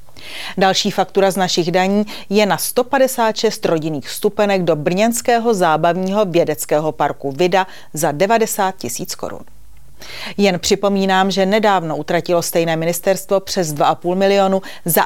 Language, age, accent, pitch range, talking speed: Czech, 30-49, native, 170-205 Hz, 125 wpm